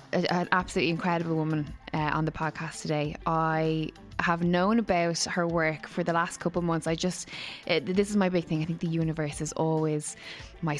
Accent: Irish